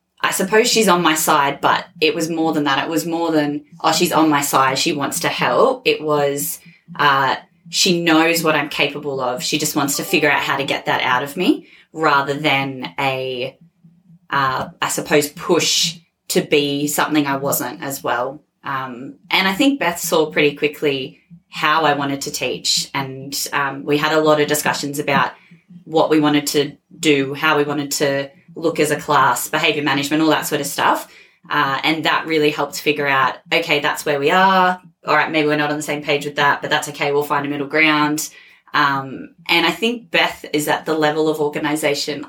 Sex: female